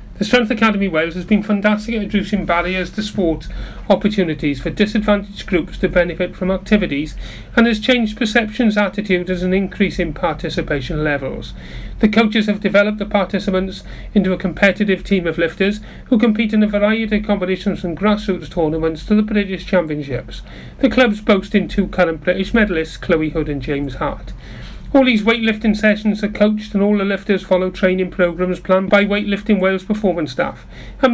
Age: 40-59